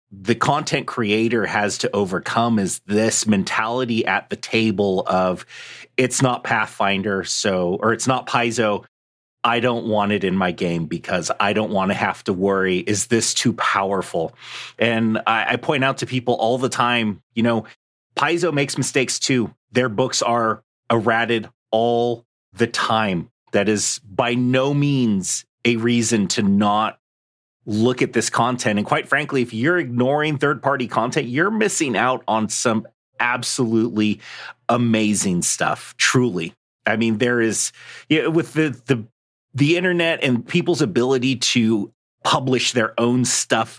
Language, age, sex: English, 30-49, male